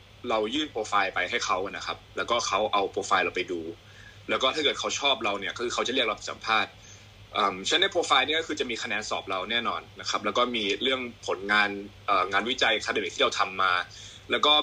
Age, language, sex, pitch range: 20-39, Thai, male, 100-135 Hz